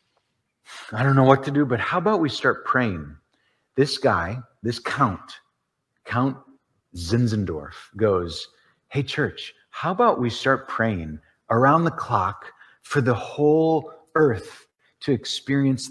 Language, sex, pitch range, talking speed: English, male, 110-150 Hz, 130 wpm